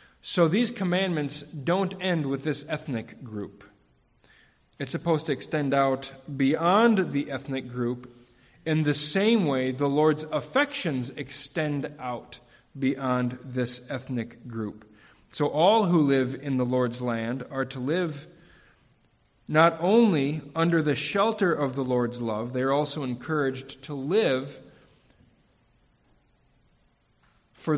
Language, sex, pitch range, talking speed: English, male, 125-150 Hz, 125 wpm